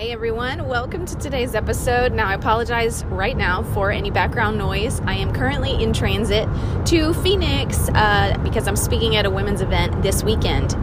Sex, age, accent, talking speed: female, 30-49, American, 175 wpm